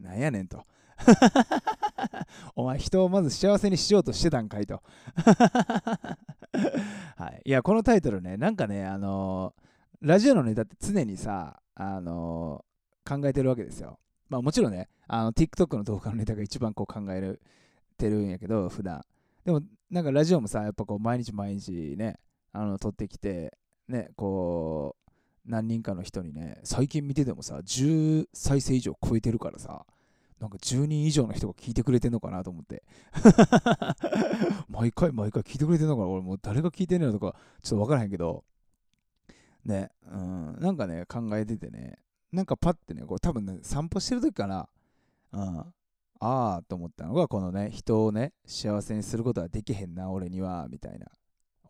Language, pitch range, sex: Japanese, 95-150 Hz, male